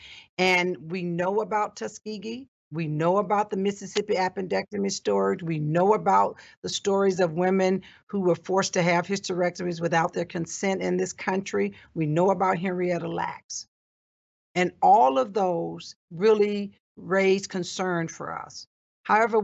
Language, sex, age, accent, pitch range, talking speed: English, female, 50-69, American, 175-205 Hz, 140 wpm